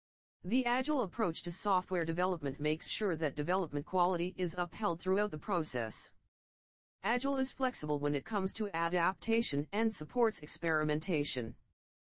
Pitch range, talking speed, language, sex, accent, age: 145-210 Hz, 135 wpm, English, female, American, 40-59